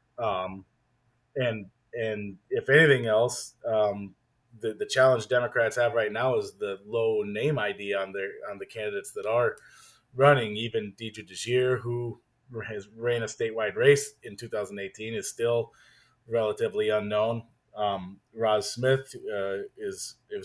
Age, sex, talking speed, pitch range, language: 30-49, male, 140 wpm, 115-165 Hz, English